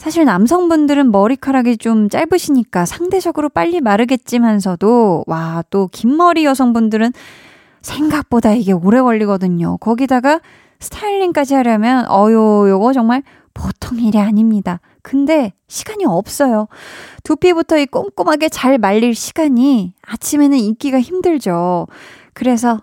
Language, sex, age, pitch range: Korean, female, 20-39, 205-275 Hz